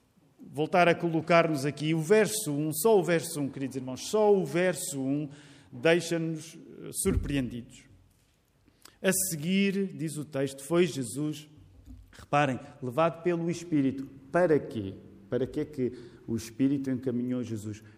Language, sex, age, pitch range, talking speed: Portuguese, male, 40-59, 125-165 Hz, 135 wpm